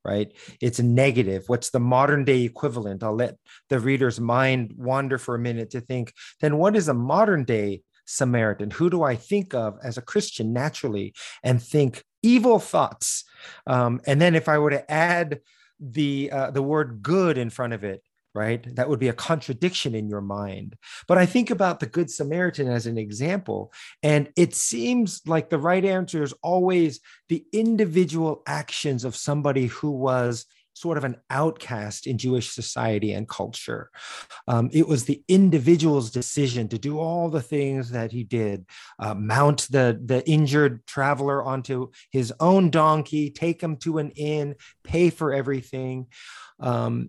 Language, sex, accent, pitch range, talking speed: English, male, American, 120-160 Hz, 170 wpm